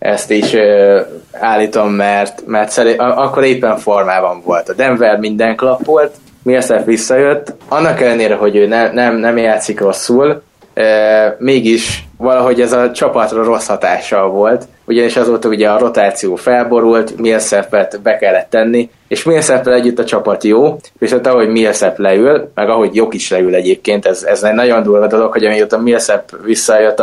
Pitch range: 105-125 Hz